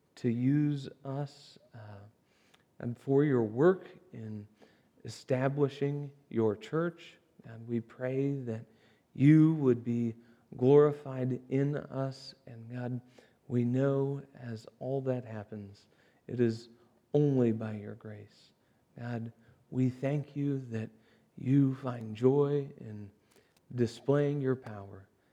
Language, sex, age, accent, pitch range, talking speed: English, male, 40-59, American, 110-135 Hz, 115 wpm